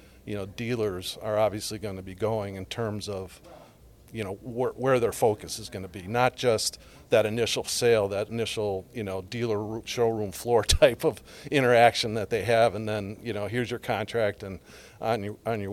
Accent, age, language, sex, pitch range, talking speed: American, 50-69, English, male, 100-120 Hz, 195 wpm